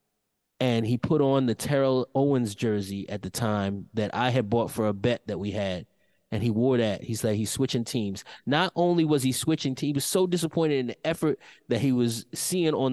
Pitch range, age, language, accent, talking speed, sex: 115-155 Hz, 20-39, English, American, 225 wpm, male